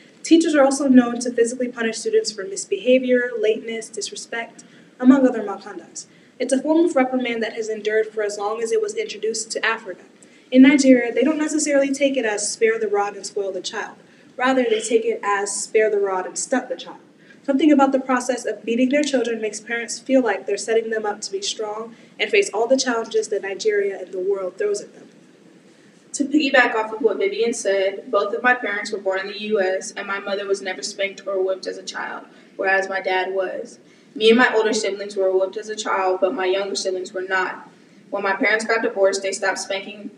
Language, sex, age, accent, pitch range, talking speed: English, female, 20-39, American, 195-250 Hz, 220 wpm